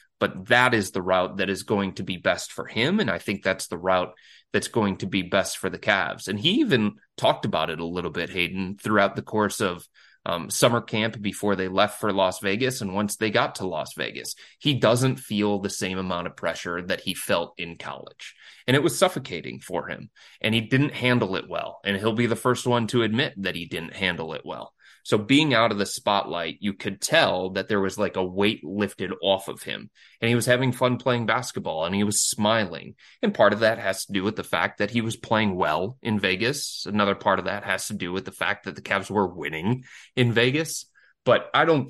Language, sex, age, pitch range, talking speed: English, male, 30-49, 95-120 Hz, 235 wpm